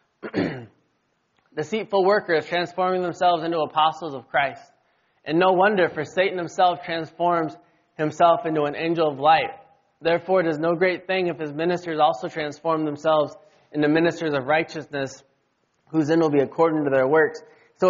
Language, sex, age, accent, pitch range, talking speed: English, male, 20-39, American, 150-180 Hz, 155 wpm